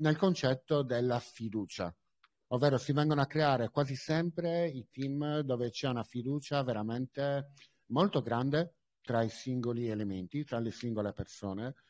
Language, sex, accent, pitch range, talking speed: Italian, male, native, 115-150 Hz, 140 wpm